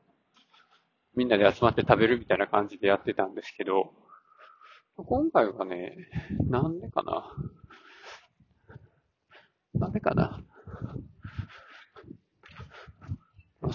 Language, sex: Japanese, male